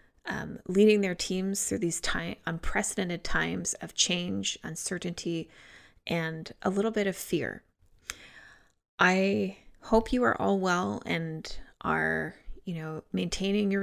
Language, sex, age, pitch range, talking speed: English, female, 20-39, 170-200 Hz, 130 wpm